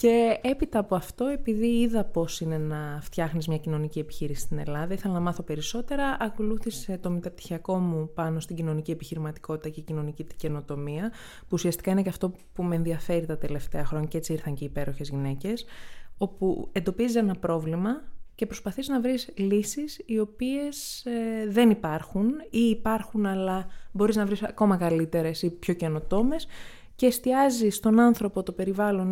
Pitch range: 160-225 Hz